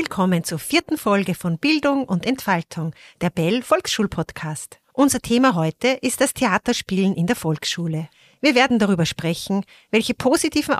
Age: 40-59